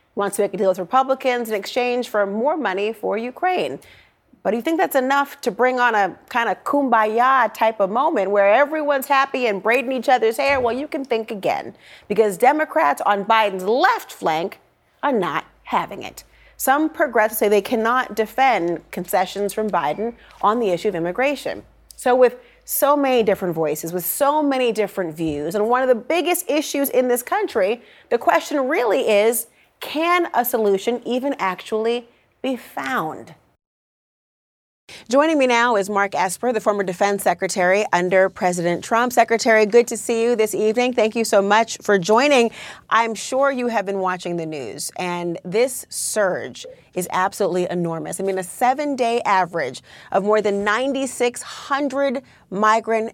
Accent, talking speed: American, 165 wpm